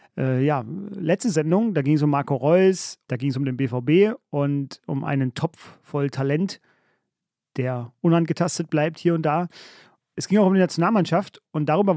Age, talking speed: 30-49, 180 wpm